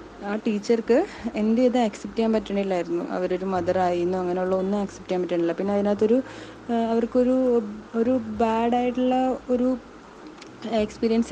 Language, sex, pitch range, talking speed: Malayalam, female, 185-225 Hz, 115 wpm